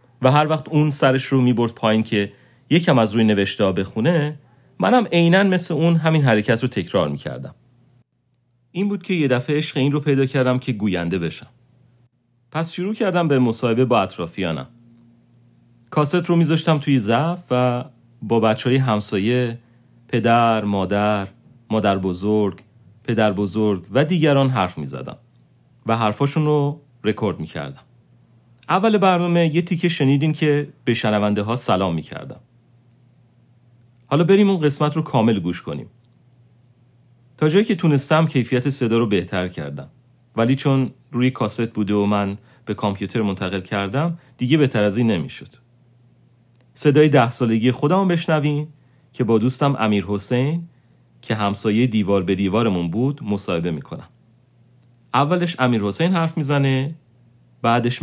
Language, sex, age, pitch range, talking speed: Persian, male, 40-59, 110-145 Hz, 145 wpm